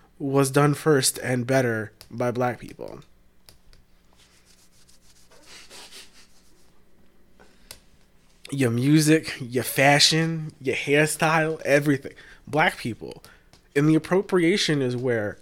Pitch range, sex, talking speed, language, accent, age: 110-155 Hz, male, 85 wpm, English, American, 20-39